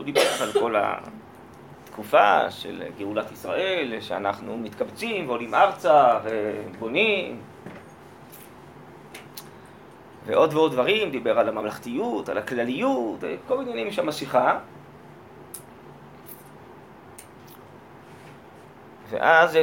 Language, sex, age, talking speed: Hebrew, male, 30-49, 85 wpm